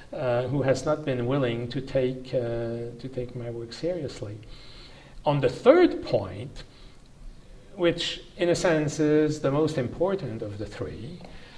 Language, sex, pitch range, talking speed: English, male, 120-150 Hz, 140 wpm